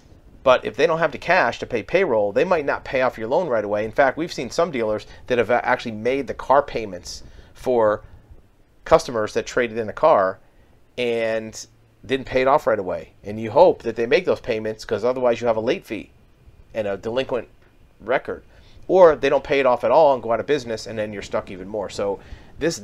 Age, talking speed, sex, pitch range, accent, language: 40-59, 225 wpm, male, 105-130 Hz, American, English